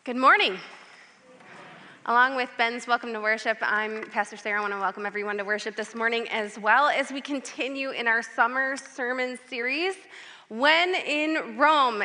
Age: 20-39